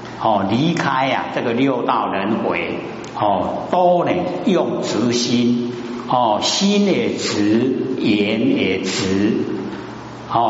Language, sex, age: Chinese, male, 60-79